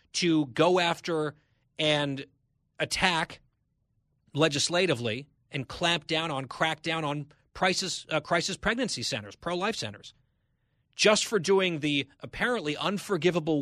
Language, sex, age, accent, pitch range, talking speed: English, male, 30-49, American, 125-165 Hz, 115 wpm